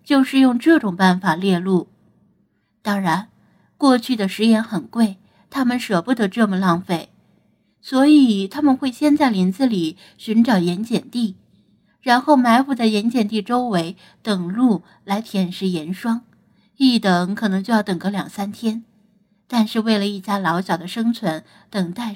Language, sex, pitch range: Chinese, female, 195-245 Hz